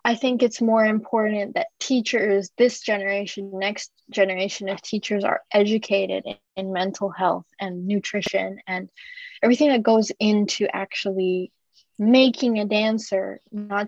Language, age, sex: Japanese, 20-39, female